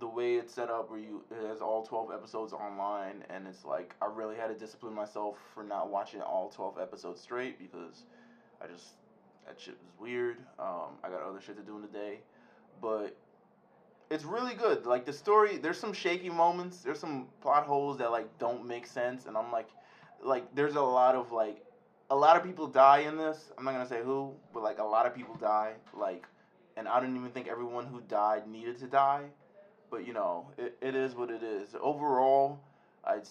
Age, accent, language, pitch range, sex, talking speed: 20-39, American, English, 105-130 Hz, male, 210 wpm